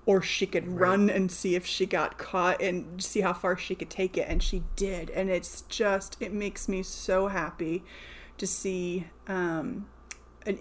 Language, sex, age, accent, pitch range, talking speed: English, female, 30-49, American, 180-200 Hz, 185 wpm